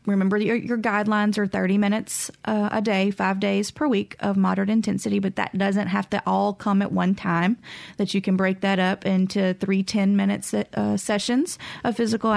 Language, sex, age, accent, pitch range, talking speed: English, female, 30-49, American, 185-210 Hz, 195 wpm